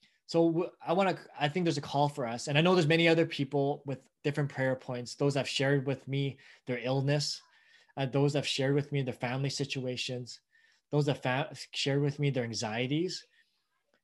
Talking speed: 205 wpm